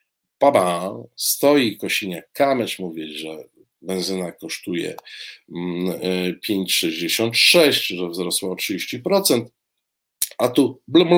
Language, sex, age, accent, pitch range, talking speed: Polish, male, 50-69, native, 95-145 Hz, 85 wpm